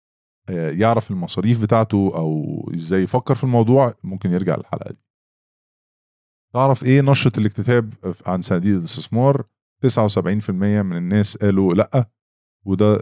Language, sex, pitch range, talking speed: English, male, 95-115 Hz, 110 wpm